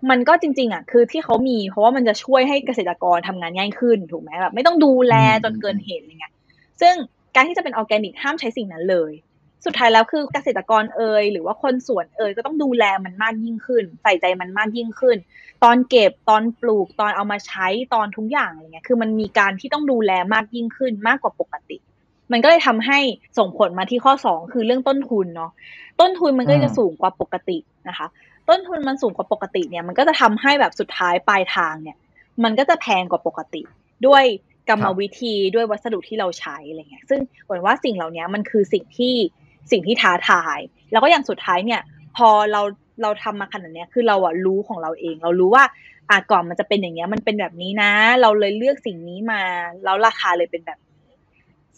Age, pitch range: 20-39, 185-255 Hz